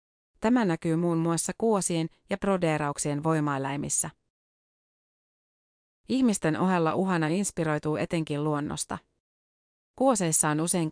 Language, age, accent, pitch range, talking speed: Finnish, 30-49, native, 155-190 Hz, 95 wpm